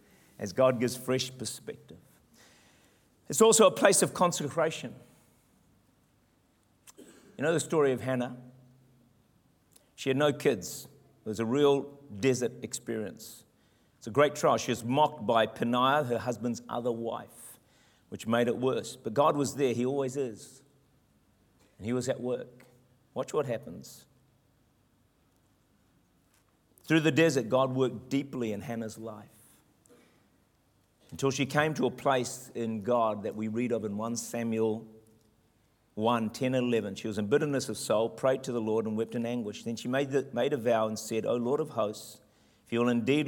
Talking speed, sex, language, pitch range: 160 wpm, male, English, 110-135 Hz